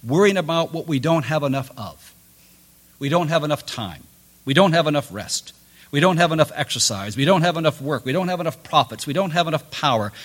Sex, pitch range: male, 125-185 Hz